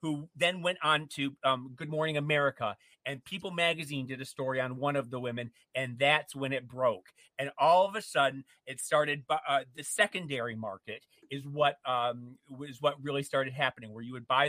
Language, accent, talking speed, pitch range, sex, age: English, American, 205 wpm, 130-155 Hz, male, 30-49